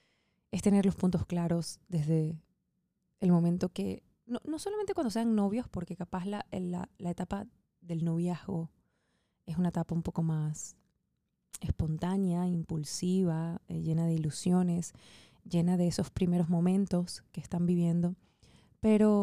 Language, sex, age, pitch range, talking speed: Spanish, female, 20-39, 165-185 Hz, 135 wpm